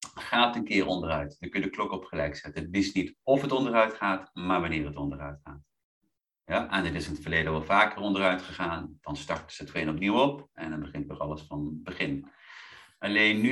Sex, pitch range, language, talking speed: male, 85-120 Hz, Dutch, 230 wpm